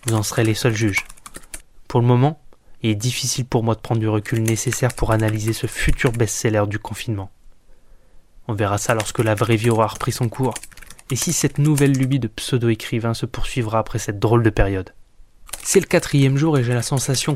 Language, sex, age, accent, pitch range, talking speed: French, male, 20-39, French, 110-130 Hz, 205 wpm